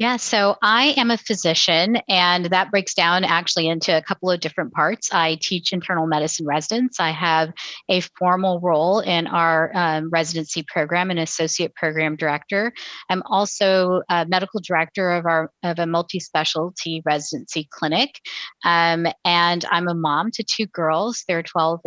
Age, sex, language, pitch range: 30-49, female, English, 165-195 Hz